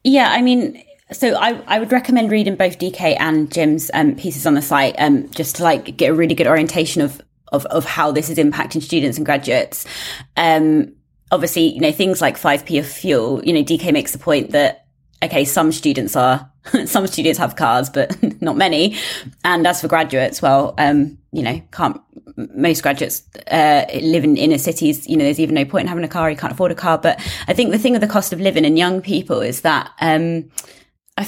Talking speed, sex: 220 wpm, female